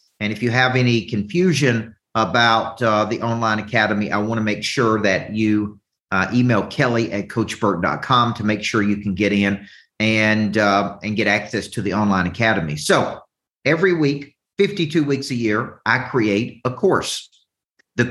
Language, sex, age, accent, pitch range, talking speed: English, male, 50-69, American, 105-130 Hz, 170 wpm